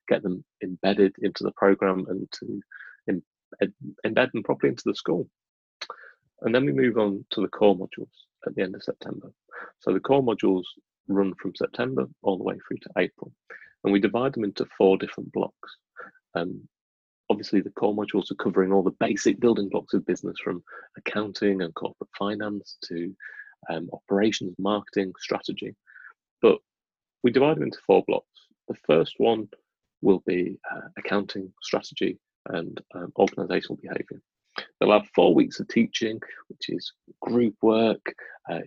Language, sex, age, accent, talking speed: English, male, 30-49, British, 160 wpm